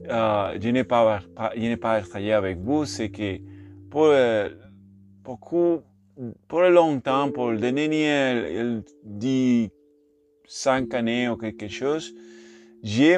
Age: 30-49